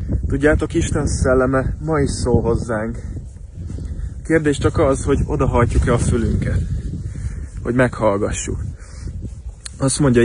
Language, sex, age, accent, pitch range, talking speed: English, male, 20-39, Finnish, 90-125 Hz, 115 wpm